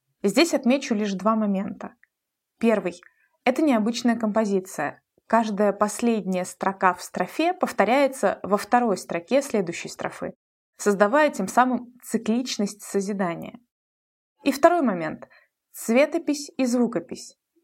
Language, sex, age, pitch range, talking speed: Russian, female, 20-39, 200-260 Hz, 105 wpm